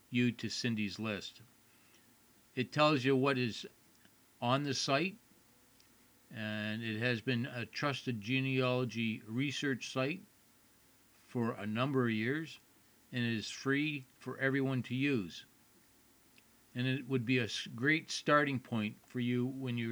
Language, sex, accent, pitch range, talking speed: English, male, American, 115-135 Hz, 140 wpm